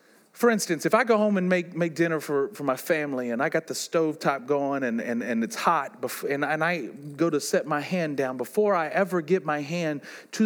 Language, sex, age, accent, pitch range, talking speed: English, male, 40-59, American, 175-265 Hz, 240 wpm